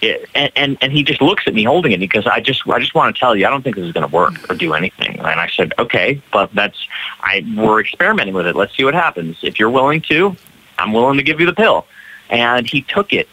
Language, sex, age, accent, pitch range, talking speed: English, male, 30-49, American, 115-160 Hz, 275 wpm